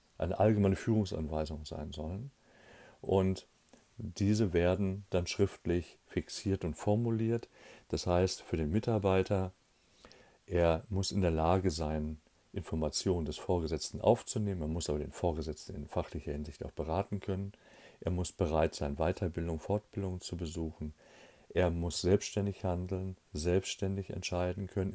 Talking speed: 130 wpm